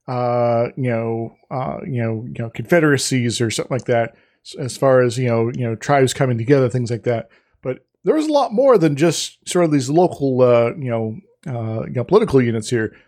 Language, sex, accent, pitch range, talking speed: English, male, American, 120-155 Hz, 205 wpm